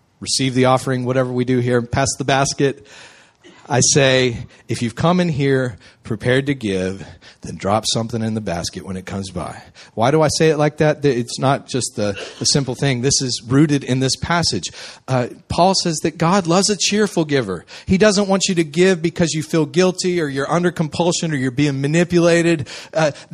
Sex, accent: male, American